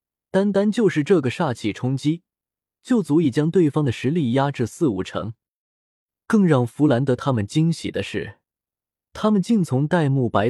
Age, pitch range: 20-39, 110-160 Hz